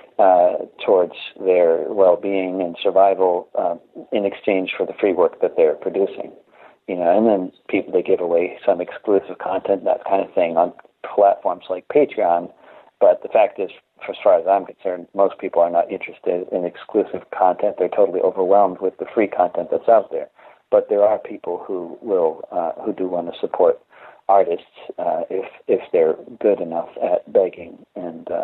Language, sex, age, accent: English, male, 40-59, American